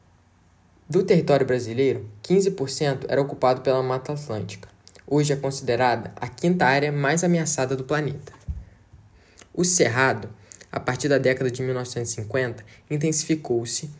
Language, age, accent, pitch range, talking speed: Portuguese, 10-29, Brazilian, 115-155 Hz, 120 wpm